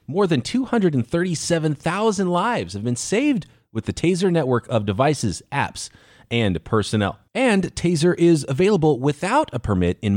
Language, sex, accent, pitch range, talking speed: English, male, American, 115-170 Hz, 140 wpm